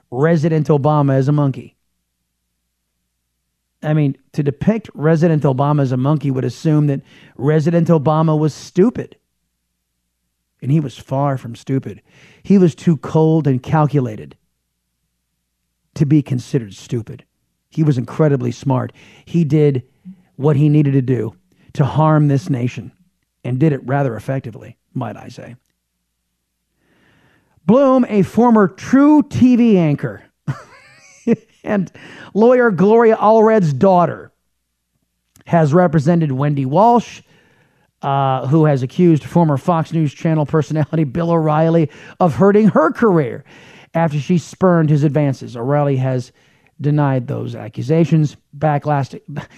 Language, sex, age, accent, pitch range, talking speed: English, male, 40-59, American, 130-165 Hz, 120 wpm